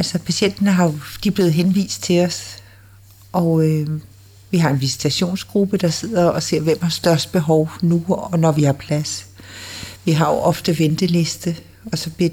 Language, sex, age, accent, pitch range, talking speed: Danish, female, 60-79, native, 155-195 Hz, 180 wpm